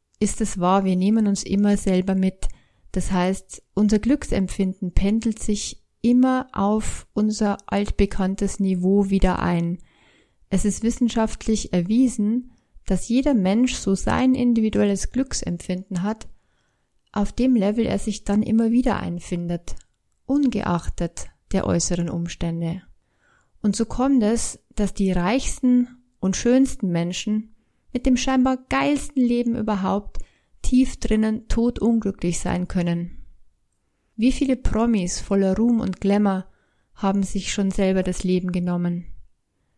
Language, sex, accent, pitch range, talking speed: German, female, German, 185-225 Hz, 125 wpm